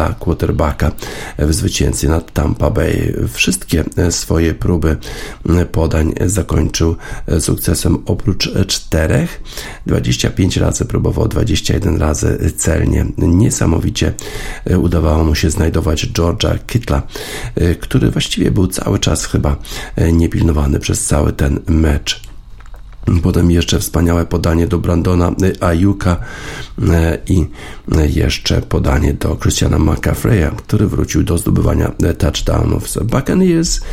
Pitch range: 80-95 Hz